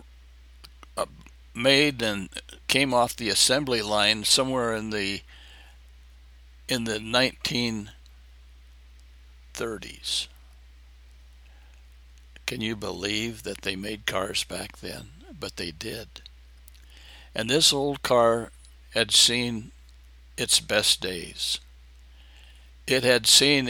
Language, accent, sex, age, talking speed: English, American, male, 60-79, 95 wpm